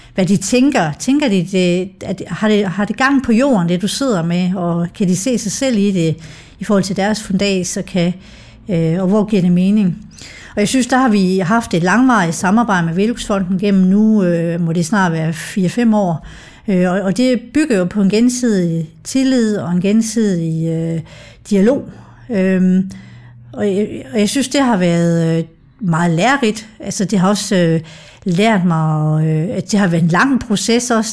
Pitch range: 175-220 Hz